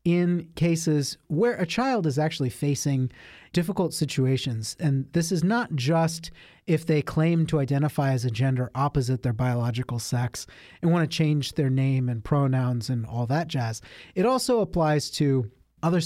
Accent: American